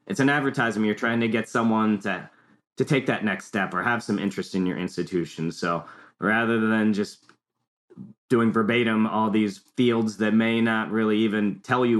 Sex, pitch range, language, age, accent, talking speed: male, 95-110 Hz, English, 30-49, American, 185 wpm